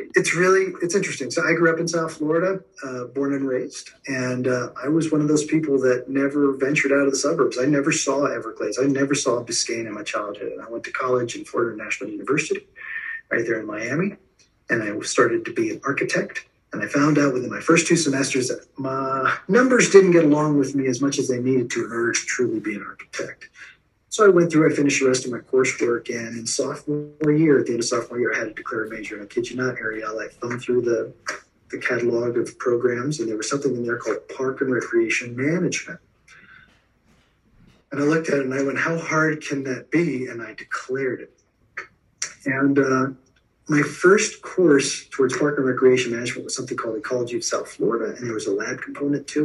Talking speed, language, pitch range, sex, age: 220 wpm, English, 130-165 Hz, male, 40-59